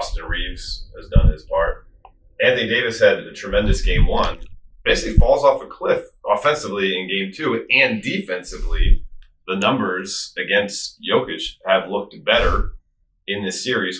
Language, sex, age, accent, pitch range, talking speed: English, male, 30-49, American, 90-130 Hz, 145 wpm